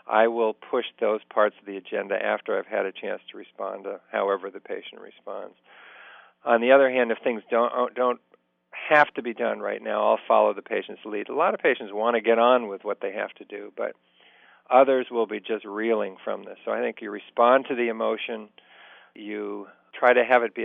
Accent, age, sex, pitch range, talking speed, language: American, 50-69, male, 100-120 Hz, 220 wpm, English